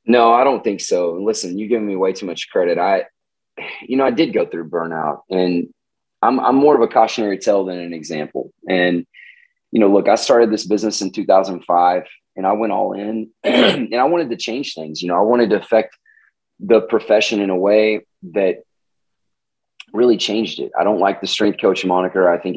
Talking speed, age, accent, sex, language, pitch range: 205 wpm, 30-49, American, male, English, 90-135 Hz